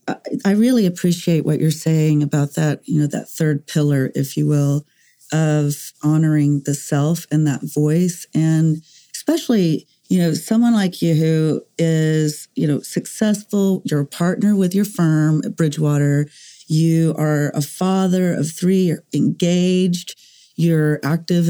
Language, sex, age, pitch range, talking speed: English, female, 40-59, 155-190 Hz, 150 wpm